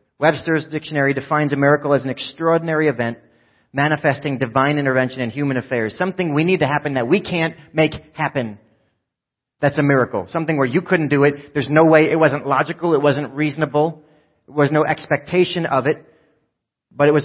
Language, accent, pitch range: English, American, 125-155 Hz